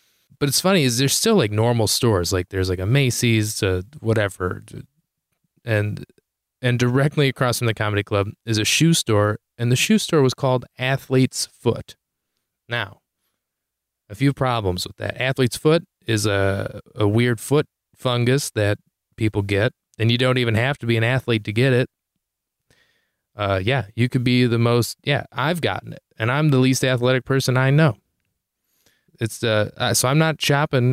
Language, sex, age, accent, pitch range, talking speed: English, male, 30-49, American, 110-135 Hz, 175 wpm